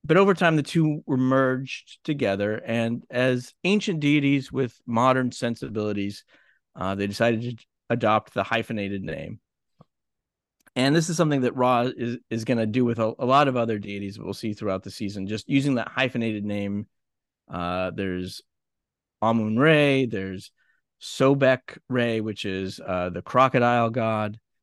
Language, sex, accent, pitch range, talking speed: English, male, American, 105-135 Hz, 150 wpm